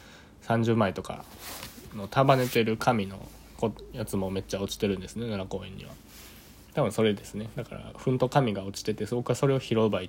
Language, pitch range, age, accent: Japanese, 95-115 Hz, 20-39, native